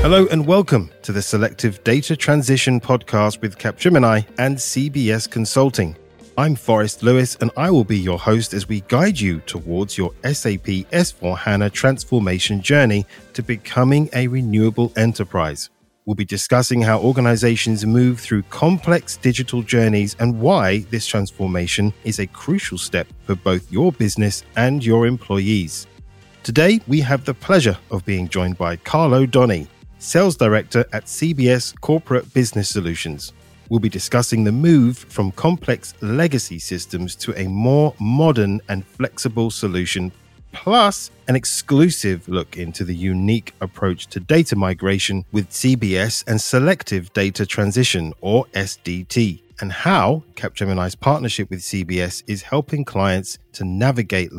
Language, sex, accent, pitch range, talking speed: English, male, British, 95-125 Hz, 140 wpm